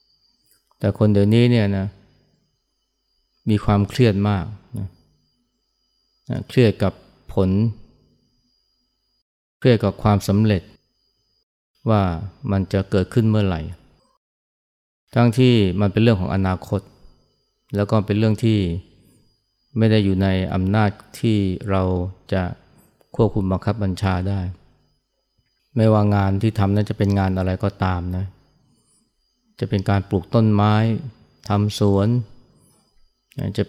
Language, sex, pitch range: Thai, male, 95-110 Hz